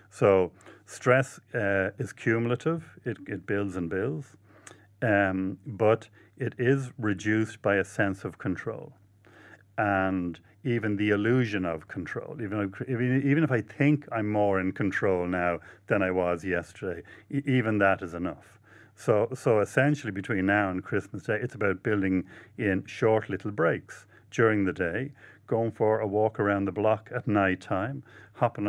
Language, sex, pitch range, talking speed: English, male, 100-120 Hz, 155 wpm